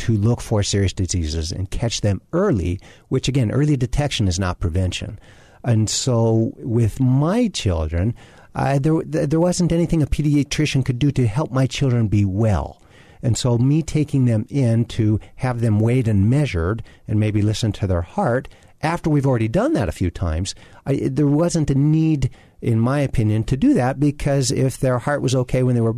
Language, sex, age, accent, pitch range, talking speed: English, male, 50-69, American, 100-130 Hz, 190 wpm